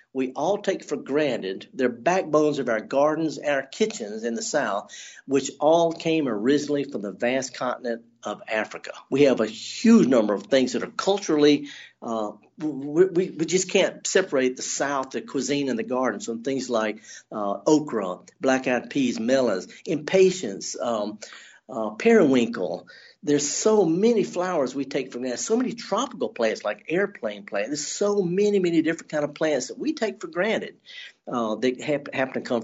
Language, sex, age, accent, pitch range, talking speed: English, male, 50-69, American, 120-175 Hz, 175 wpm